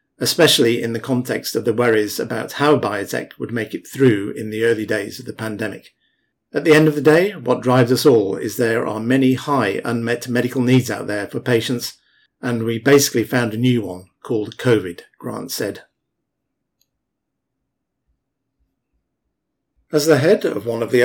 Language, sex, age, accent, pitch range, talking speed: English, male, 50-69, British, 115-135 Hz, 175 wpm